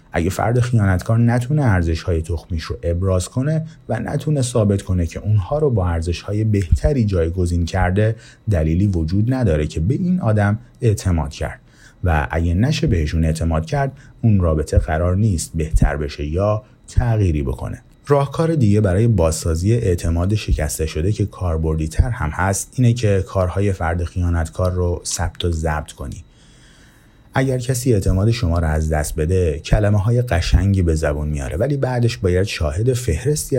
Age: 30-49